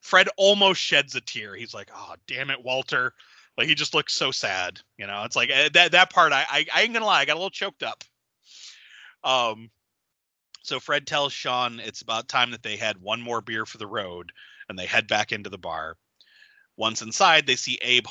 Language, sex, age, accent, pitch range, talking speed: English, male, 30-49, American, 110-145 Hz, 215 wpm